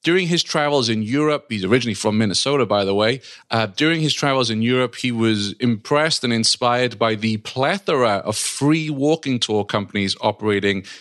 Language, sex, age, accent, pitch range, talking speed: English, male, 30-49, British, 100-125 Hz, 175 wpm